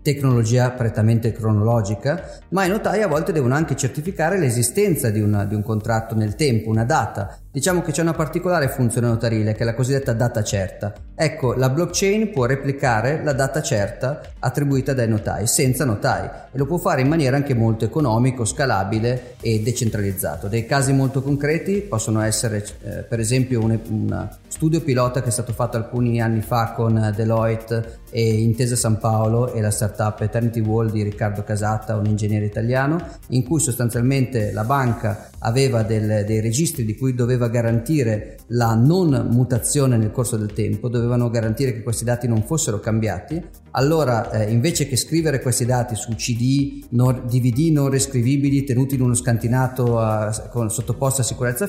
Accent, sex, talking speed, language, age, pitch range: native, male, 165 wpm, Italian, 30-49, 110-135 Hz